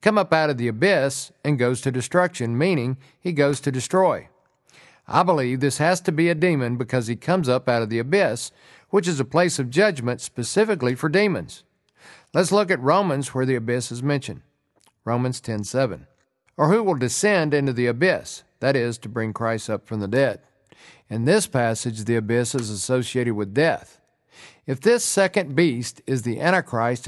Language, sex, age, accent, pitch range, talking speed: English, male, 50-69, American, 125-180 Hz, 185 wpm